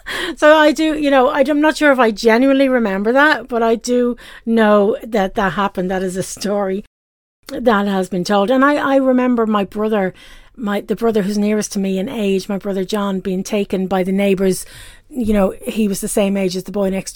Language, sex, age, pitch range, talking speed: English, female, 40-59, 190-250 Hz, 215 wpm